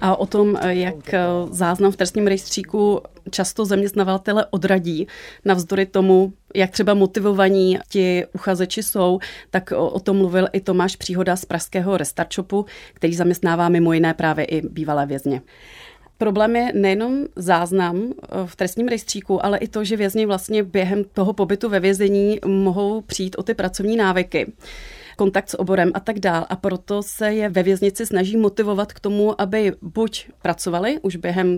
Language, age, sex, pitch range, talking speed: Czech, 30-49, female, 180-205 Hz, 155 wpm